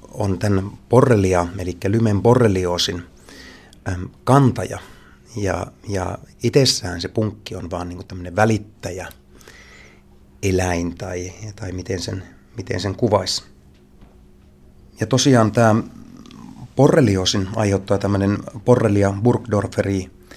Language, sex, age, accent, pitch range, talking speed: Finnish, male, 30-49, native, 95-115 Hz, 95 wpm